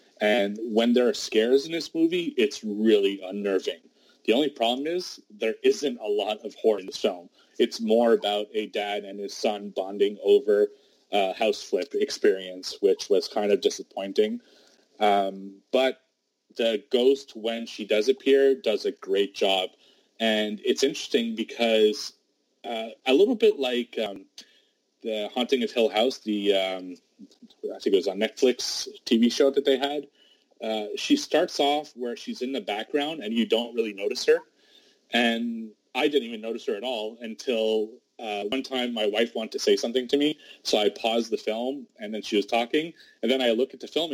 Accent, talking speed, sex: American, 185 wpm, male